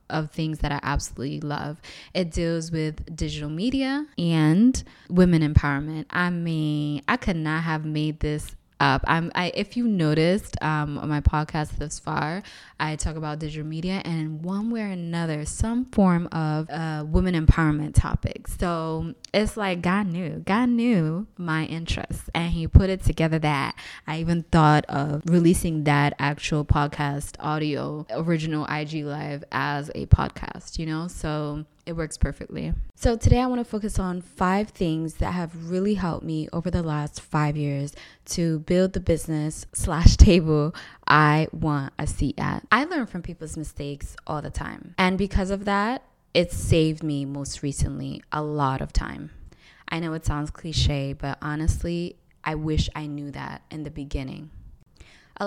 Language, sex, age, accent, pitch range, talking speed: English, female, 20-39, American, 150-175 Hz, 165 wpm